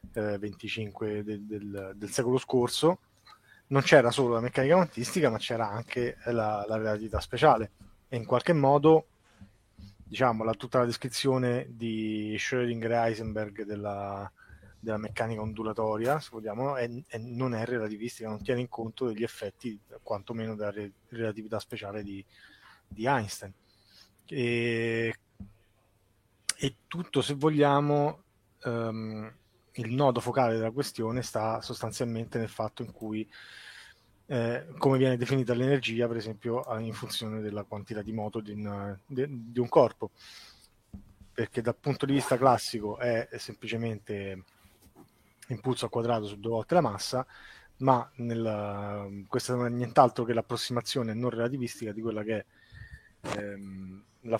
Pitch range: 105-125 Hz